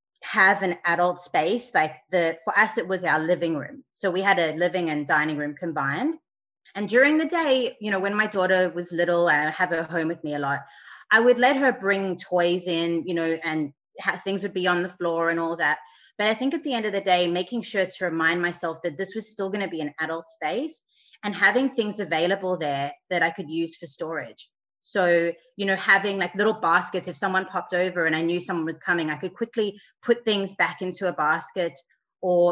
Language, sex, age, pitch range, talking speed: English, female, 20-39, 170-210 Hz, 230 wpm